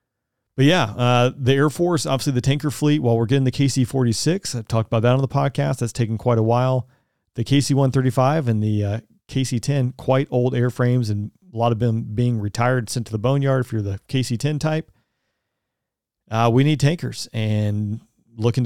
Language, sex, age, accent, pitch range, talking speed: English, male, 40-59, American, 115-135 Hz, 185 wpm